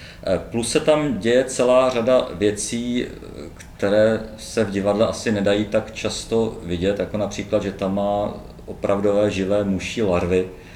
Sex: male